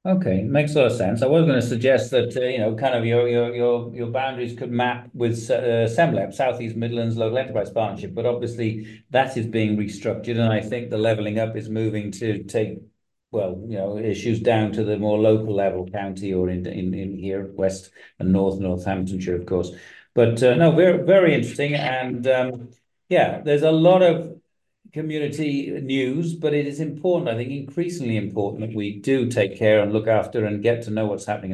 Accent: British